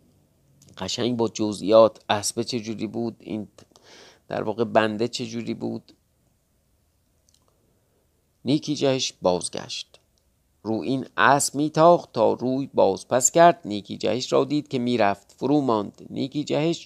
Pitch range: 115-155 Hz